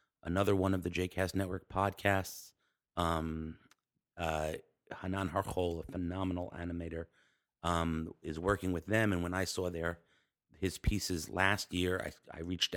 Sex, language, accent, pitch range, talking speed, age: male, English, American, 85-110 Hz, 145 wpm, 30-49